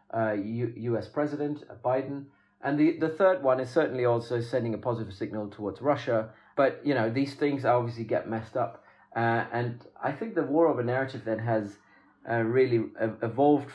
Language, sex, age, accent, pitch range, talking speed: English, male, 30-49, British, 110-130 Hz, 185 wpm